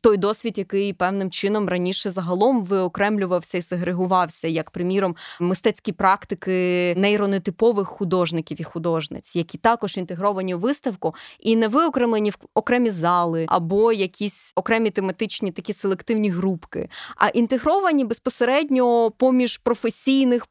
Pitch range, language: 185-225 Hz, Ukrainian